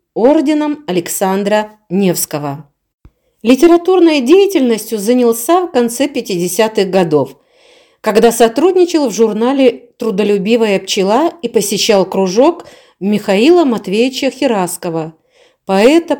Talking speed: 85 wpm